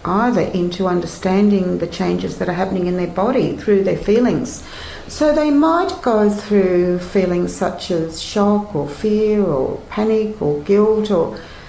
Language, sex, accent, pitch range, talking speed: English, female, Australian, 180-210 Hz, 155 wpm